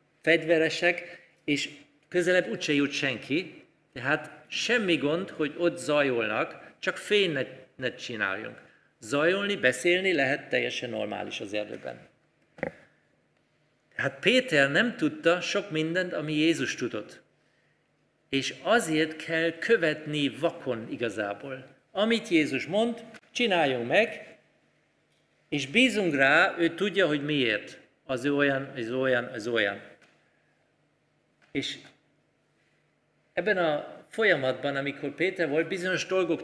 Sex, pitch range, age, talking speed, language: male, 135-175 Hz, 50-69, 105 wpm, Hungarian